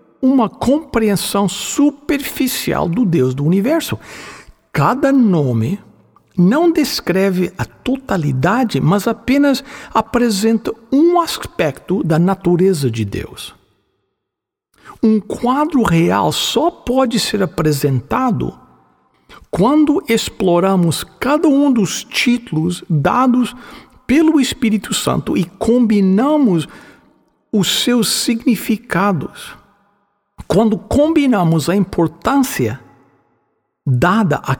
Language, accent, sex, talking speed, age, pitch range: English, Brazilian, male, 85 wpm, 60-79, 165-255 Hz